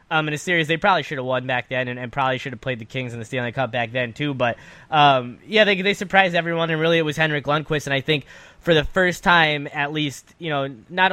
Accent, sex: American, male